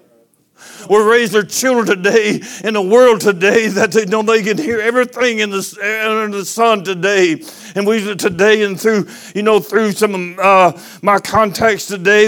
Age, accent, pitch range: 60-79, American, 195-220 Hz